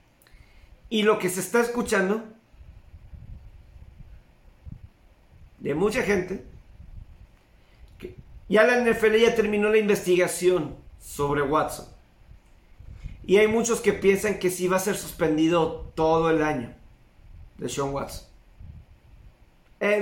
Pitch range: 140-200 Hz